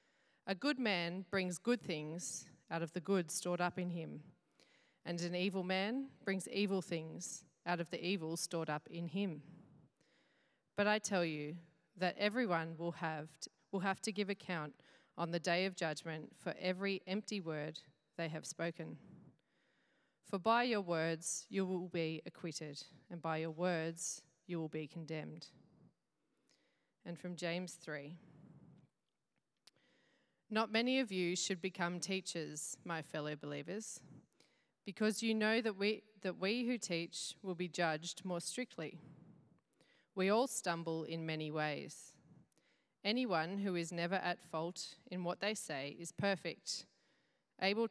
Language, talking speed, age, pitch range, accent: English, 145 wpm, 30-49, 165-200 Hz, Australian